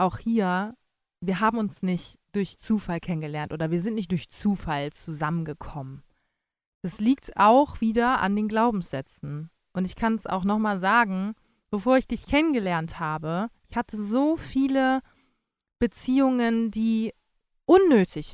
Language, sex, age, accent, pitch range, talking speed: German, female, 20-39, German, 190-260 Hz, 135 wpm